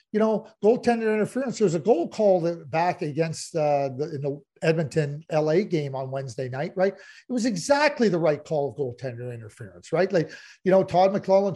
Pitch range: 170-220 Hz